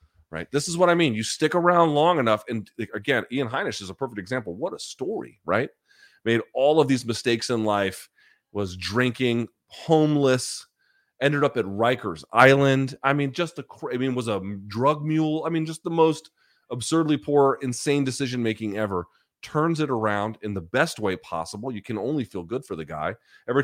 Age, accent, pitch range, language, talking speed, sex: 30-49, American, 100-140 Hz, English, 190 wpm, male